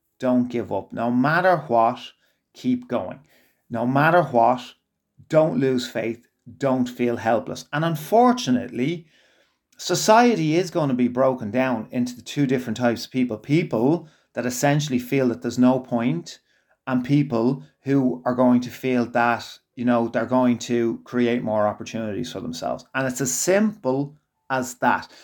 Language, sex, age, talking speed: English, male, 30-49, 155 wpm